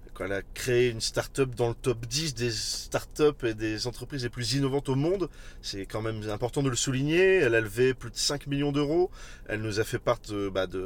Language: French